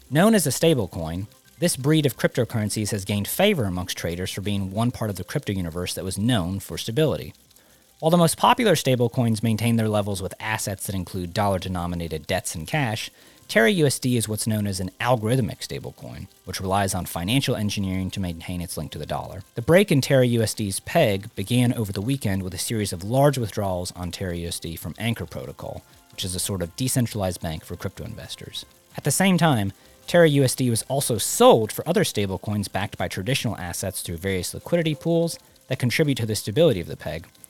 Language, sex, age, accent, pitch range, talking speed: English, male, 40-59, American, 95-130 Hz, 190 wpm